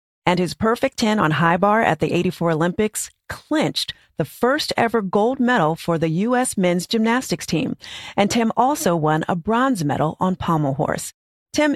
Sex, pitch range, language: female, 165-230 Hz, English